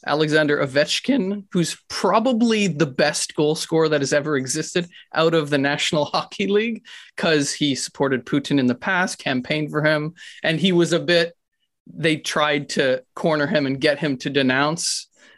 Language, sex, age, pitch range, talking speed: English, male, 30-49, 135-175 Hz, 170 wpm